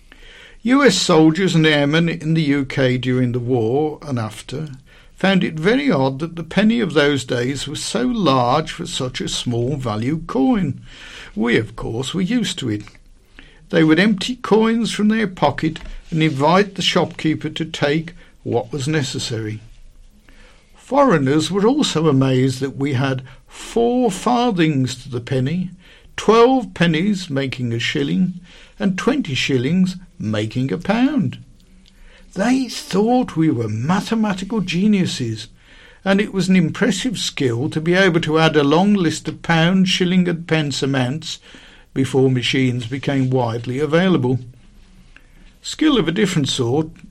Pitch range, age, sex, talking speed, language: 130-190 Hz, 60-79, male, 145 wpm, English